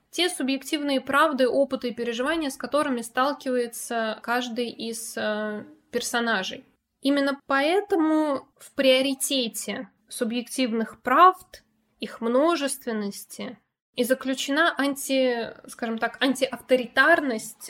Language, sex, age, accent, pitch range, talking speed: Russian, female, 20-39, native, 225-270 Hz, 80 wpm